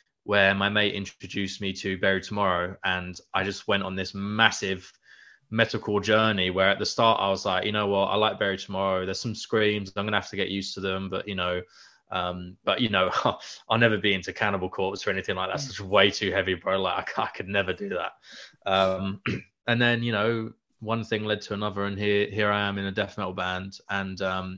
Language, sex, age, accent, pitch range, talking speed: English, male, 20-39, British, 95-110 Hz, 230 wpm